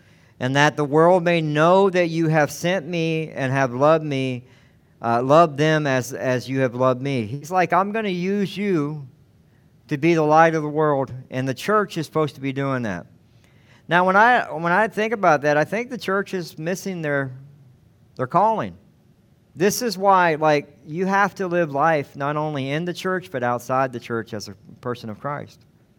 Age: 50-69